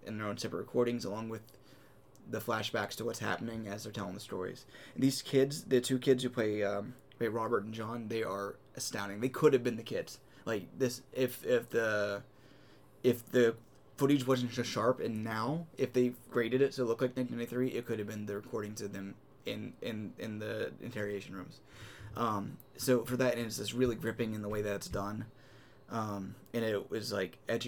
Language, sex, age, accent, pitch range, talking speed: English, male, 20-39, American, 105-130 Hz, 205 wpm